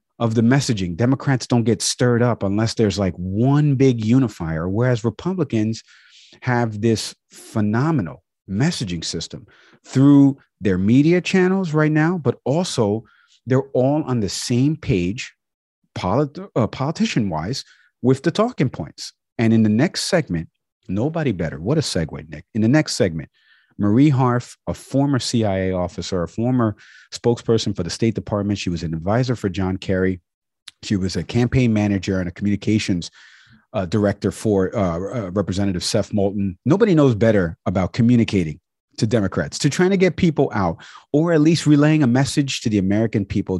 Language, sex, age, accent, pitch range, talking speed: English, male, 40-59, American, 95-130 Hz, 160 wpm